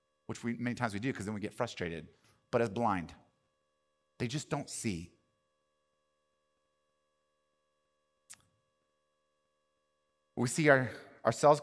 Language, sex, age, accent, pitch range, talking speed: English, male, 30-49, American, 75-120 Hz, 115 wpm